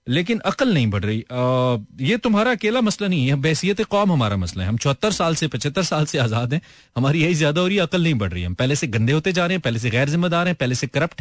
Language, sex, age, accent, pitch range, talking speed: Hindi, male, 30-49, native, 115-160 Hz, 275 wpm